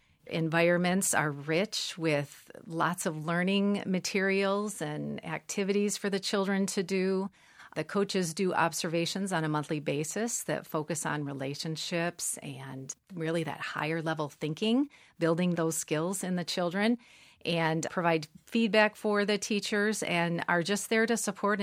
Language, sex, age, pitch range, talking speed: English, female, 40-59, 160-195 Hz, 140 wpm